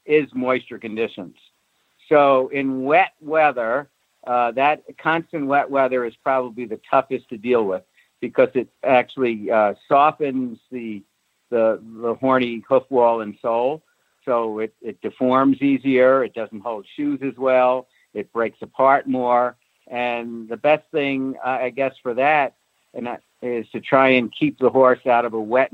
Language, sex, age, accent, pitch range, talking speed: English, male, 60-79, American, 115-130 Hz, 160 wpm